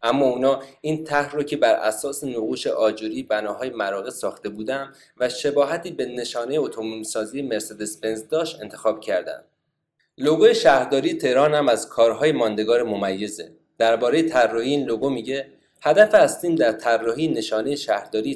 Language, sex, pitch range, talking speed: Persian, male, 115-155 Hz, 145 wpm